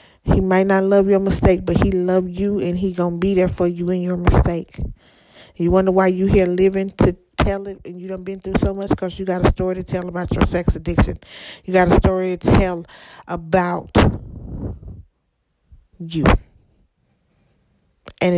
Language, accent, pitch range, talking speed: English, American, 165-190 Hz, 185 wpm